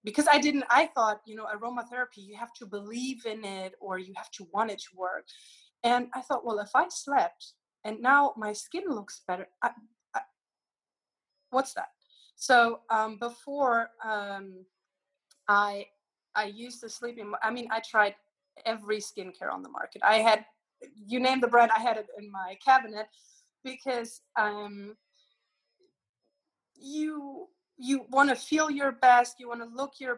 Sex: female